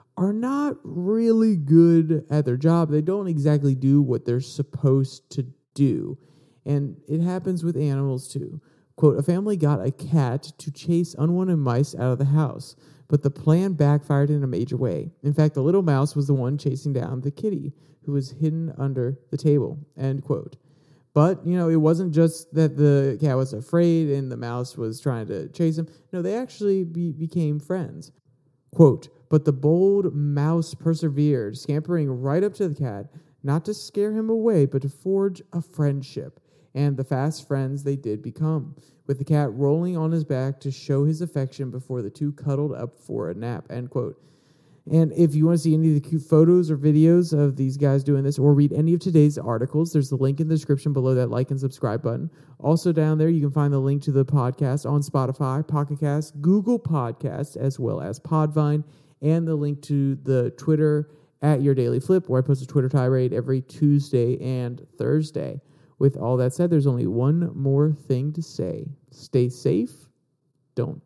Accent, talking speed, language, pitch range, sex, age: American, 195 wpm, English, 135-160 Hz, male, 40-59